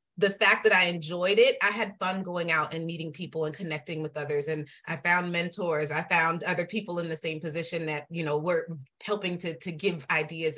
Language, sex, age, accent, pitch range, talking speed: English, female, 30-49, American, 155-225 Hz, 220 wpm